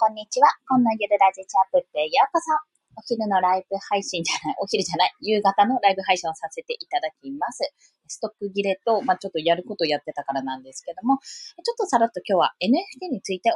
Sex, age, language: female, 20-39, Japanese